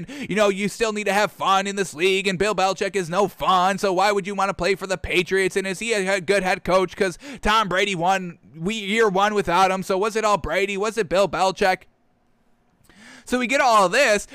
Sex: male